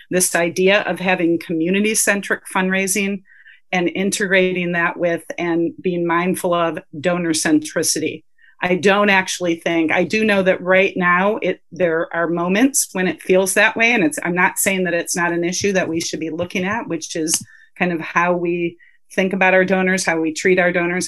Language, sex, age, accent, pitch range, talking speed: English, female, 40-59, American, 170-195 Hz, 190 wpm